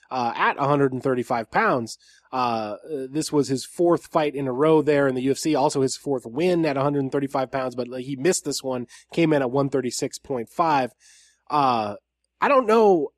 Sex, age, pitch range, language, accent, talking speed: male, 20-39, 130-175 Hz, English, American, 170 wpm